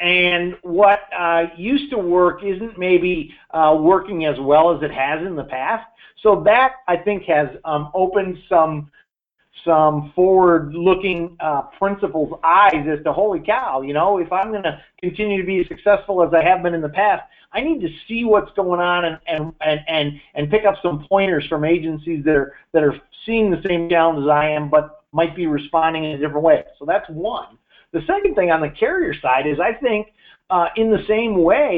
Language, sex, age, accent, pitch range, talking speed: English, male, 50-69, American, 155-195 Hz, 205 wpm